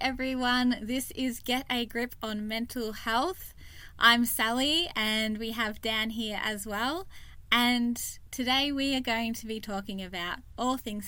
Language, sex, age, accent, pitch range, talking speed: English, female, 20-39, Australian, 195-240 Hz, 155 wpm